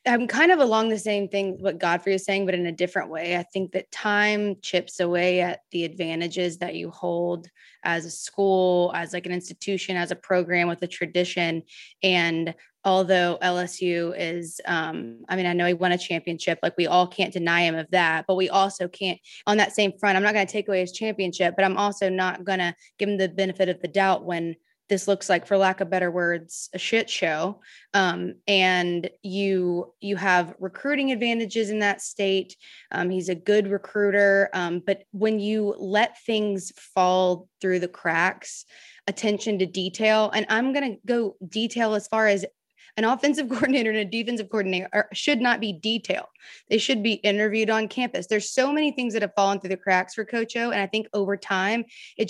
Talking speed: 200 wpm